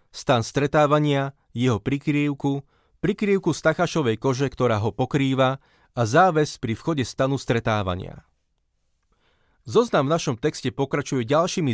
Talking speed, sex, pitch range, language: 110 wpm, male, 120-150 Hz, Slovak